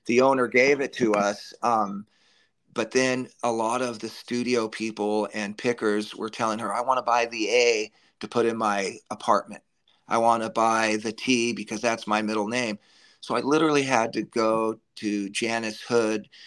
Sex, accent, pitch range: male, American, 110-125 Hz